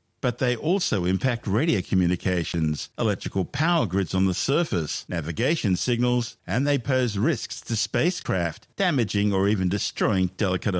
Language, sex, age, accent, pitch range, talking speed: English, male, 50-69, Australian, 95-120 Hz, 140 wpm